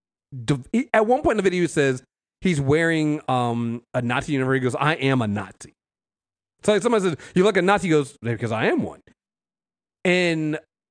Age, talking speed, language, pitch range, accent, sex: 30-49, 200 wpm, English, 120-180 Hz, American, male